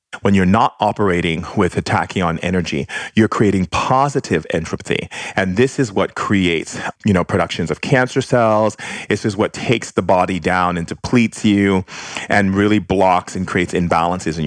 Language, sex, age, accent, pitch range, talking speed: English, male, 40-59, American, 90-110 Hz, 160 wpm